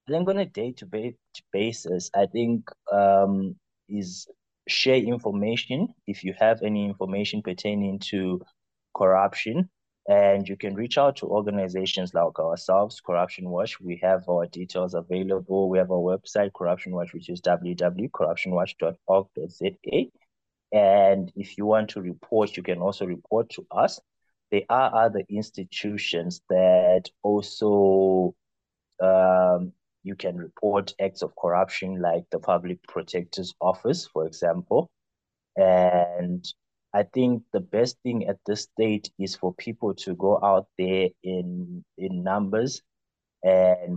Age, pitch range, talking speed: 20-39, 90-105 Hz, 135 wpm